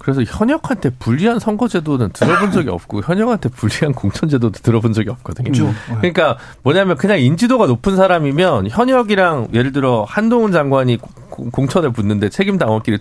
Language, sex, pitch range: Korean, male, 110-170 Hz